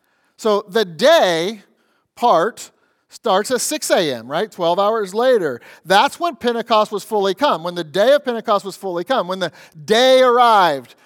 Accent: American